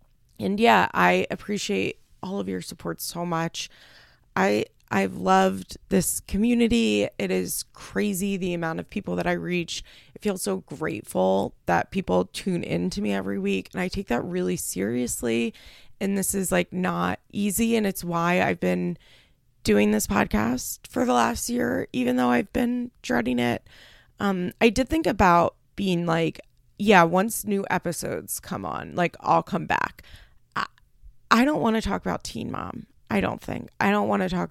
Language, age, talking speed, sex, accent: English, 20-39, 175 wpm, female, American